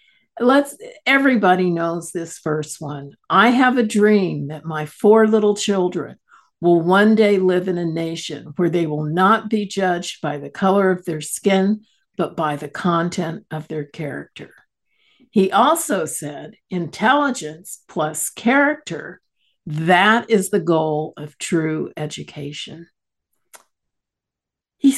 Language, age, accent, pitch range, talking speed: English, 60-79, American, 155-210 Hz, 130 wpm